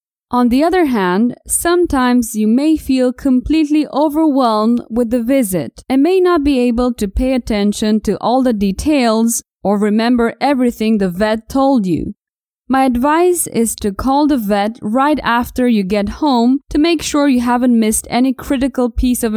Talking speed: 165 wpm